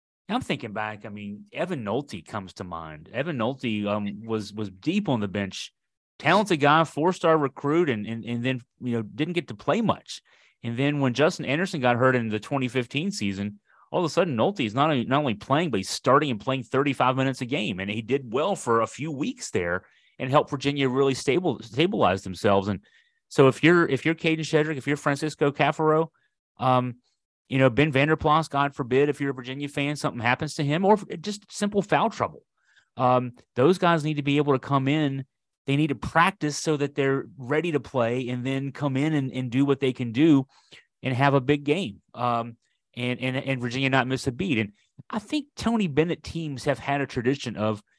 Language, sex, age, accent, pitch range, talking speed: English, male, 30-49, American, 120-150 Hz, 210 wpm